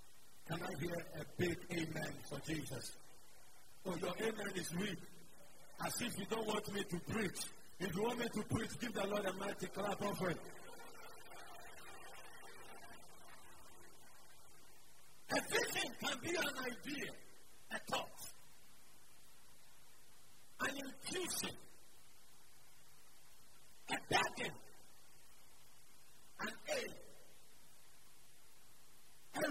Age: 50-69